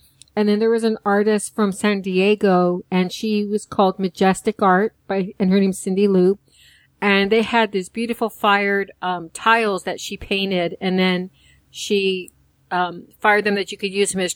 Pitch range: 185-205 Hz